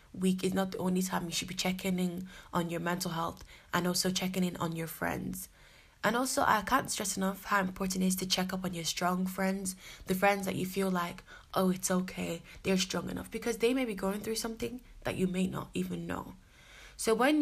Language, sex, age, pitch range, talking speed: English, female, 20-39, 180-200 Hz, 225 wpm